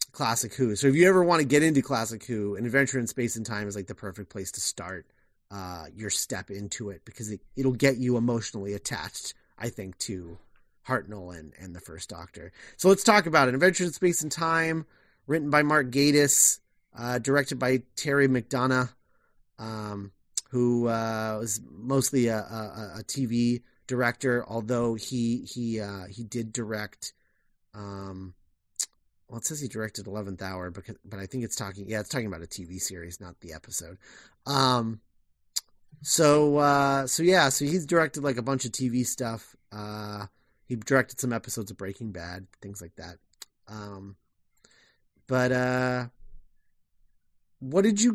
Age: 30-49